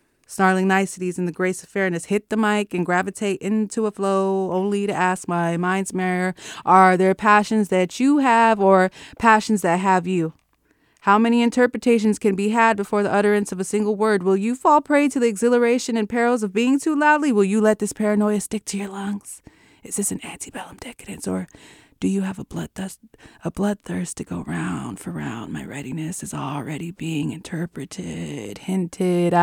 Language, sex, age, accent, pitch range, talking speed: English, female, 20-39, American, 190-260 Hz, 185 wpm